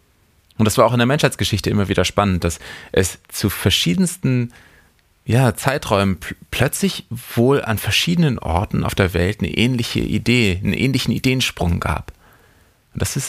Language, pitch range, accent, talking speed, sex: German, 95-125 Hz, German, 150 wpm, male